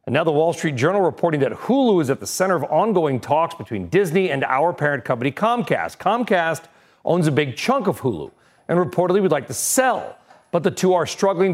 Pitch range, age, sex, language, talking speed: 140-195 Hz, 40-59, male, English, 215 wpm